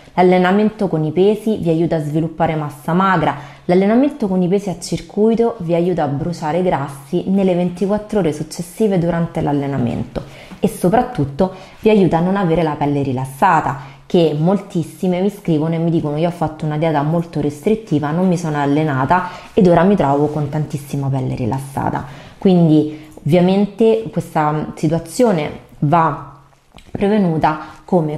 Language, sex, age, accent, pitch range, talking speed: Italian, female, 20-39, native, 150-185 Hz, 150 wpm